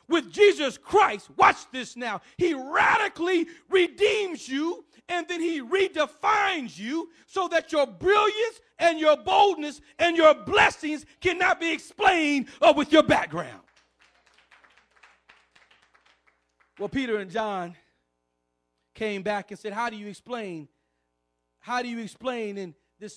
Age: 40-59